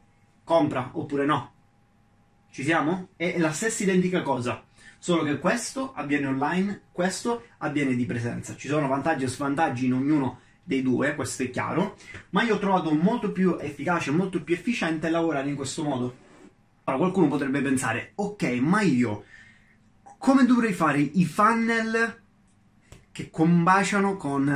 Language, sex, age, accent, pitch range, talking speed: Italian, male, 30-49, native, 125-165 Hz, 150 wpm